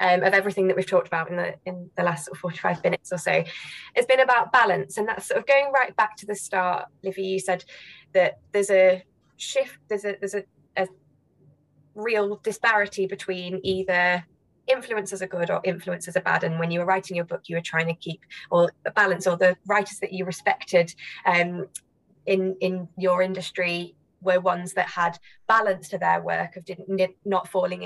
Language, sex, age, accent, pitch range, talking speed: English, female, 20-39, British, 175-200 Hz, 200 wpm